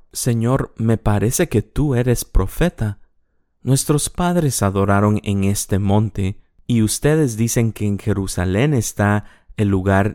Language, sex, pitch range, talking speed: Spanish, male, 95-115 Hz, 130 wpm